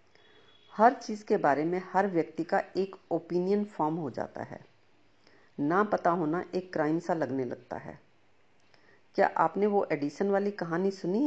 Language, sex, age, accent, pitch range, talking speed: Hindi, female, 50-69, native, 155-205 Hz, 160 wpm